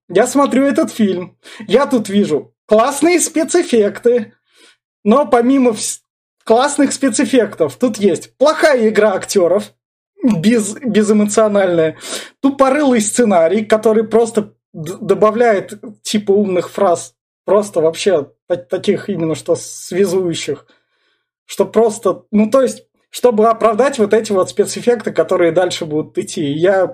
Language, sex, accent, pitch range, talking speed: Russian, male, native, 175-235 Hz, 115 wpm